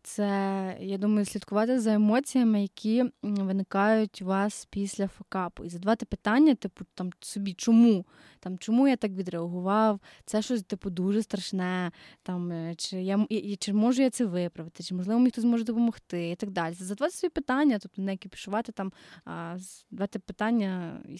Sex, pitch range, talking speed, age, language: female, 195-245 Hz, 160 wpm, 20-39, Ukrainian